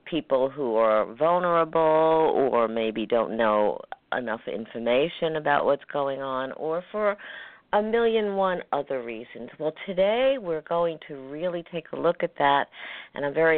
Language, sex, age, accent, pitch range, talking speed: English, female, 50-69, American, 135-180 Hz, 155 wpm